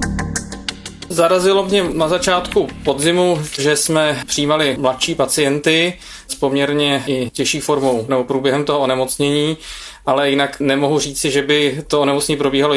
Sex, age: male, 20-39